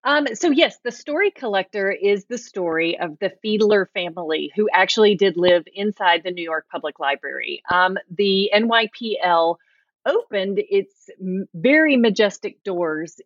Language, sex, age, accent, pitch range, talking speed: English, female, 30-49, American, 180-225 Hz, 140 wpm